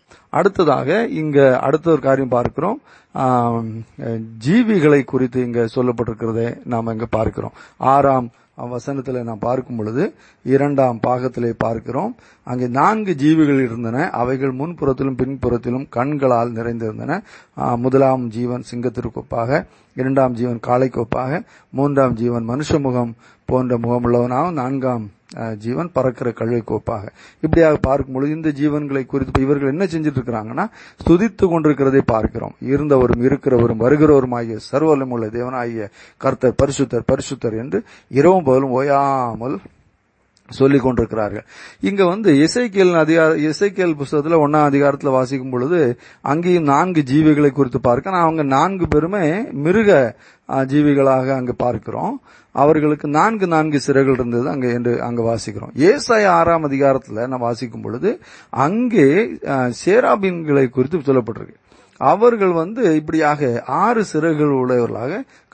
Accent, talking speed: native, 50 wpm